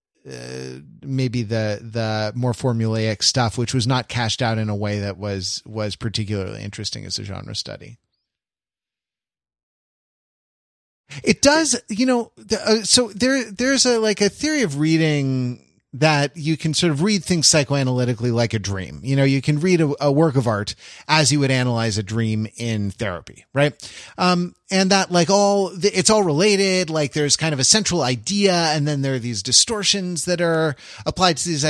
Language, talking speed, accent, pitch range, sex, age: English, 180 wpm, American, 125-170 Hz, male, 30-49